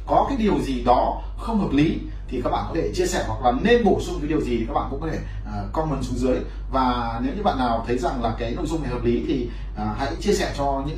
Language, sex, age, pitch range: Vietnamese, male, 20-39, 115-160 Hz